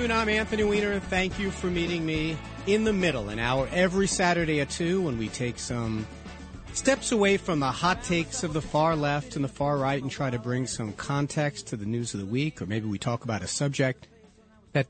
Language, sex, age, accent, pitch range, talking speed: English, male, 40-59, American, 115-160 Hz, 230 wpm